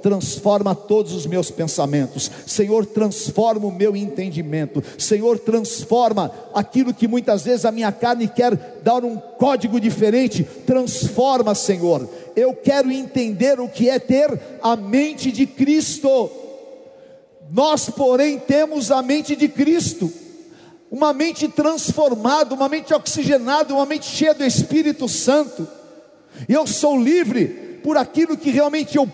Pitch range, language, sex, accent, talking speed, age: 205-275 Hz, Portuguese, male, Brazilian, 130 wpm, 50-69